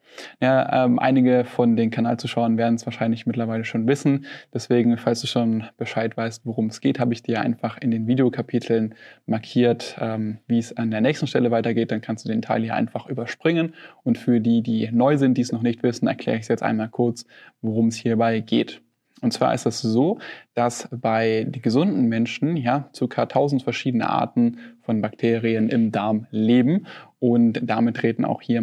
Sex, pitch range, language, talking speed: male, 115-130 Hz, German, 195 wpm